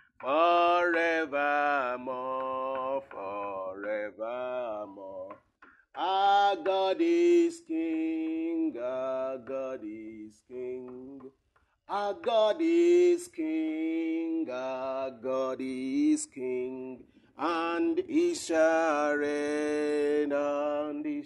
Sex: male